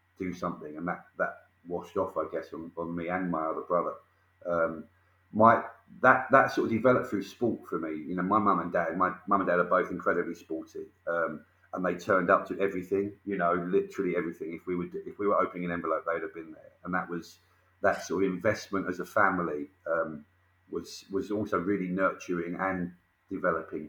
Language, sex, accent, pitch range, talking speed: English, male, British, 90-105 Hz, 210 wpm